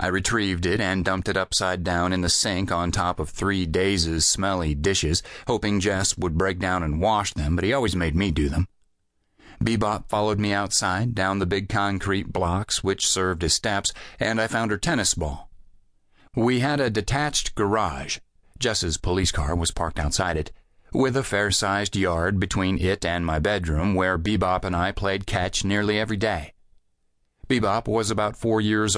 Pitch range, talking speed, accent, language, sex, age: 85-105 Hz, 180 wpm, American, English, male, 40-59